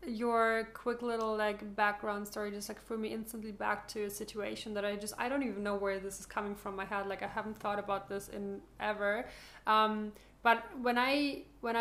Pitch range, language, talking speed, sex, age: 205-235 Hz, English, 215 wpm, female, 20-39